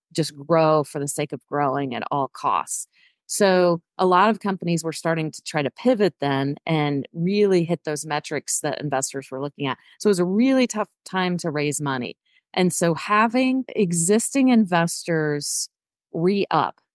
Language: English